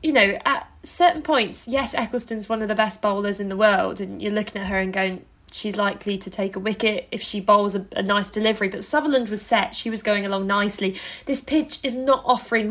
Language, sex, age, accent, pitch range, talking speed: English, female, 10-29, British, 205-255 Hz, 230 wpm